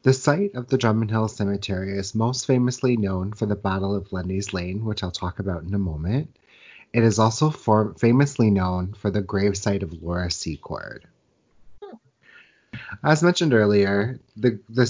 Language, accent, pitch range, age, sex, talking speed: English, American, 95-110 Hz, 30-49, male, 165 wpm